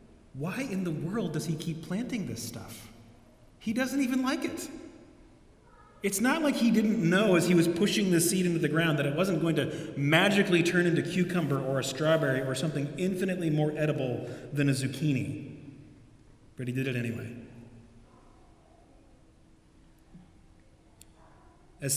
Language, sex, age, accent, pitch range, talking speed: English, male, 30-49, American, 120-165 Hz, 155 wpm